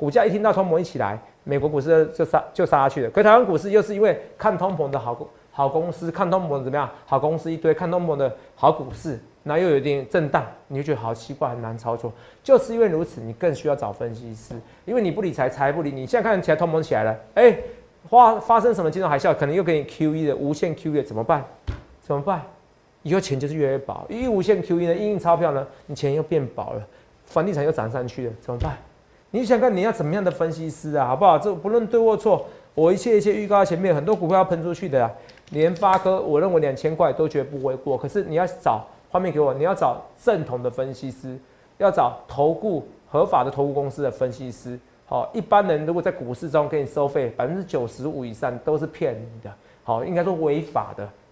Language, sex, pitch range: Chinese, male, 135-190 Hz